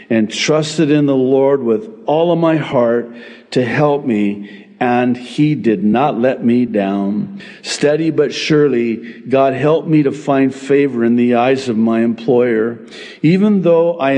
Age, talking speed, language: 50-69, 160 wpm, English